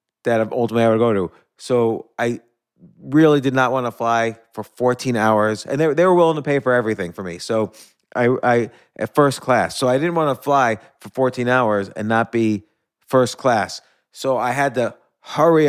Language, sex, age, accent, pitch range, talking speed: English, male, 30-49, American, 120-150 Hz, 205 wpm